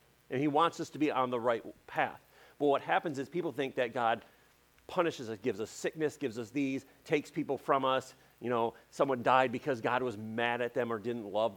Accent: American